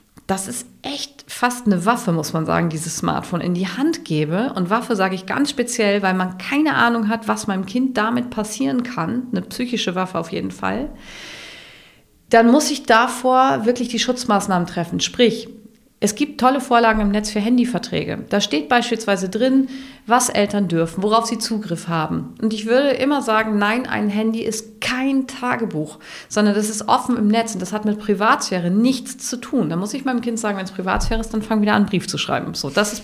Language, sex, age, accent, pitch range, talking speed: German, female, 40-59, German, 180-230 Hz, 205 wpm